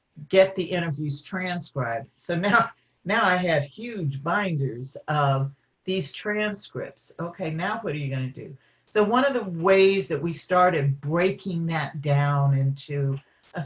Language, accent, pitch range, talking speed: English, American, 140-180 Hz, 155 wpm